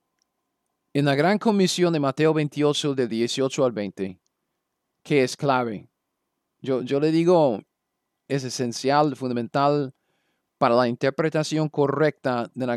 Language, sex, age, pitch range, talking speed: Spanish, male, 40-59, 130-170 Hz, 125 wpm